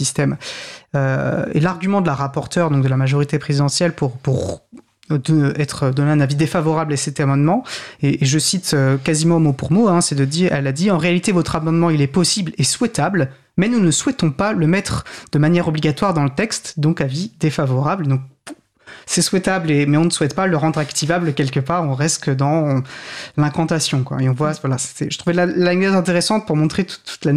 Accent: French